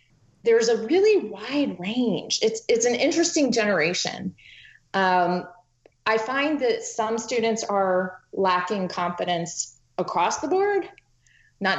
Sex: female